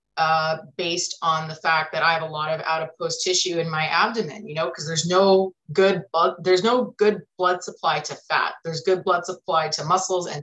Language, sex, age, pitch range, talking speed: English, female, 30-49, 160-200 Hz, 220 wpm